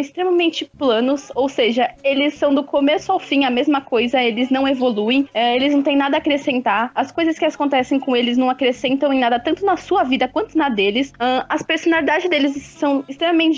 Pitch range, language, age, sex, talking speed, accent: 255-300 Hz, Portuguese, 20-39, female, 195 wpm, Brazilian